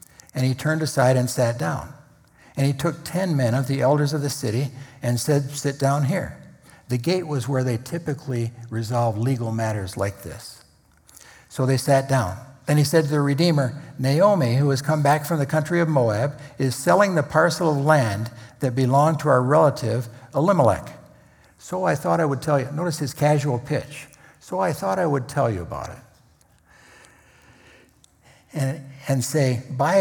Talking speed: 180 wpm